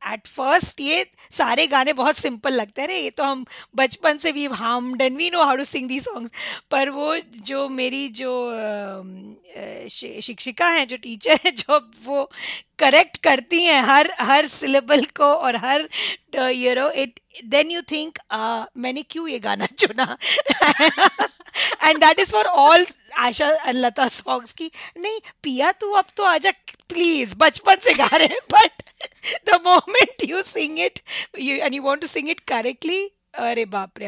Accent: native